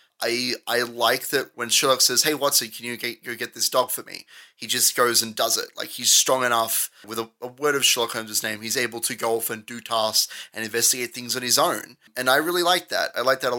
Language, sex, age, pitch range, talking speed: English, male, 30-49, 115-150 Hz, 260 wpm